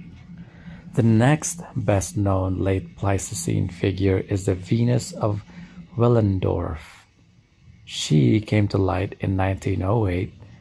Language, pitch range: English, 95-115 Hz